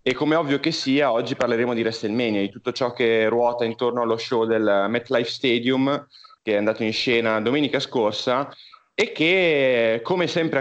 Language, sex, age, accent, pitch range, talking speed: Italian, male, 30-49, native, 120-165 Hz, 175 wpm